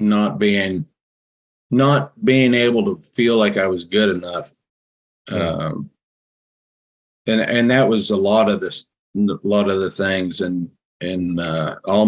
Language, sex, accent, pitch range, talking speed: English, male, American, 90-110 Hz, 150 wpm